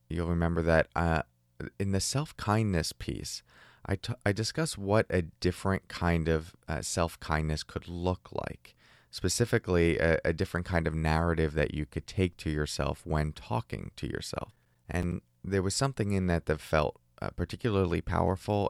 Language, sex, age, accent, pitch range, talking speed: English, male, 30-49, American, 75-110 Hz, 155 wpm